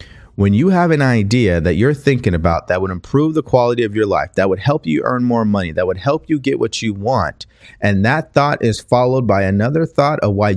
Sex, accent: male, American